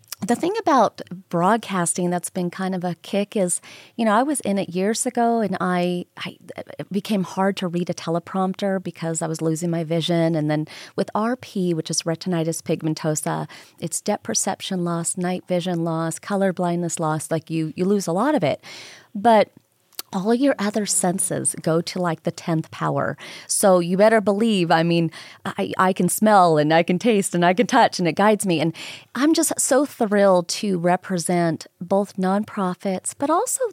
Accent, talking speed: American, 185 wpm